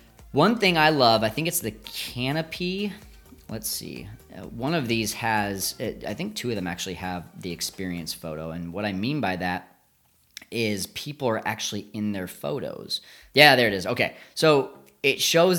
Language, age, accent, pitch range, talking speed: English, 30-49, American, 105-130 Hz, 175 wpm